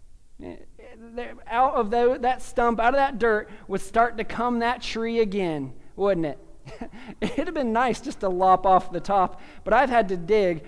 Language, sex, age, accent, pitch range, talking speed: English, male, 20-39, American, 185-235 Hz, 185 wpm